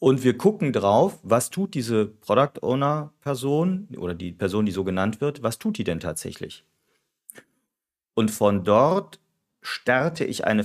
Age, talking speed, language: 40-59, 145 wpm, German